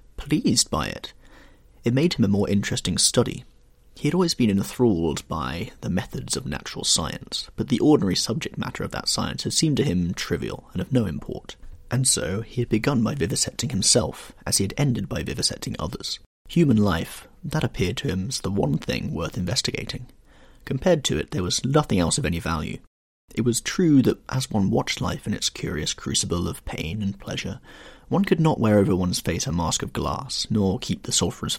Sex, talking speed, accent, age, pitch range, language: male, 200 wpm, British, 30-49, 95-135 Hz, English